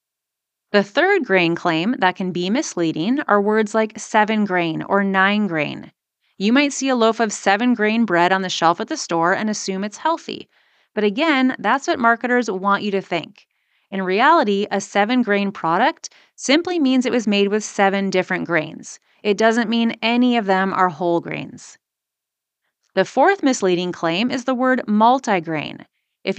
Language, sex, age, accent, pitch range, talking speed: English, female, 30-49, American, 190-245 Hz, 175 wpm